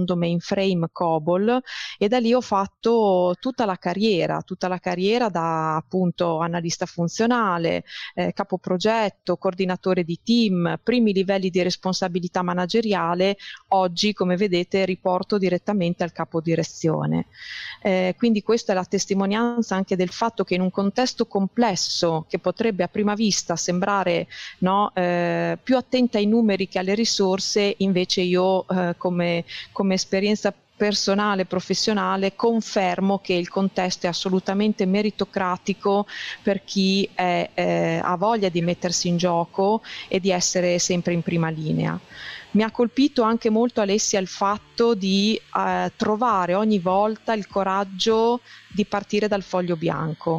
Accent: native